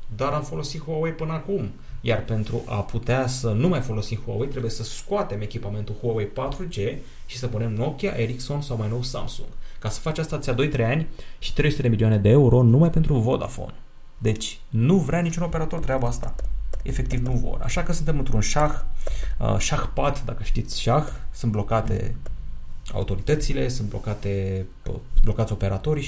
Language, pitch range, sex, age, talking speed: Romanian, 105-140 Hz, male, 30-49, 170 wpm